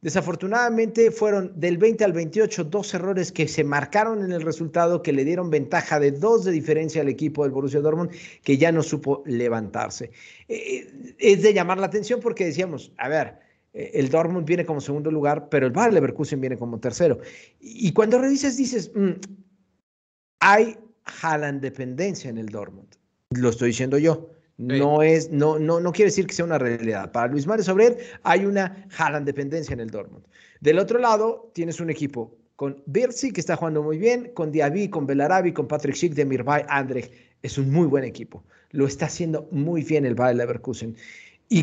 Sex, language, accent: male, Spanish, Mexican